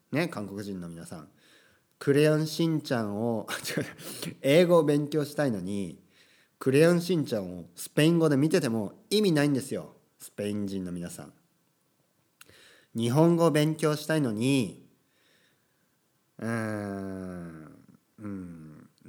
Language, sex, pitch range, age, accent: Japanese, male, 105-155 Hz, 40-59, native